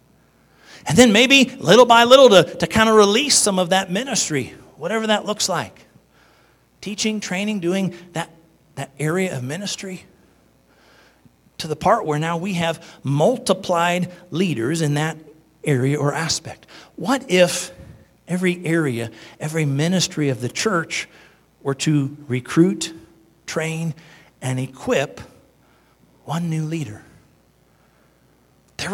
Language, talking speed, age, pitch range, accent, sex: English, 125 wpm, 50-69, 155-220 Hz, American, male